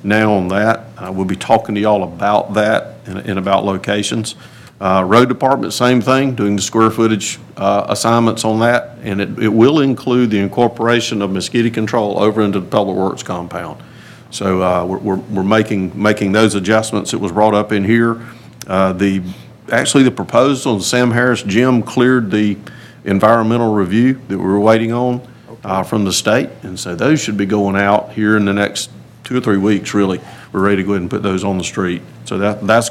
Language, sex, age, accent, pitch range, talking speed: English, male, 50-69, American, 100-115 Hz, 200 wpm